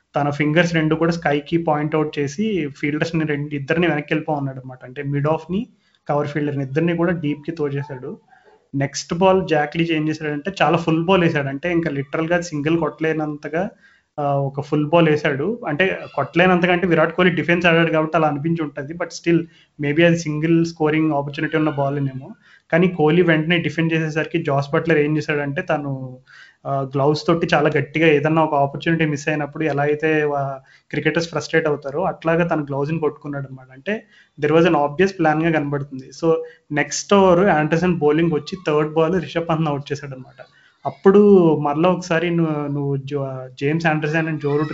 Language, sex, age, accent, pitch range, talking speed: Telugu, male, 30-49, native, 145-165 Hz, 170 wpm